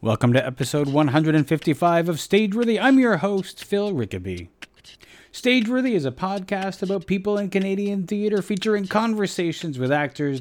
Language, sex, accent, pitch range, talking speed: English, male, American, 125-160 Hz, 140 wpm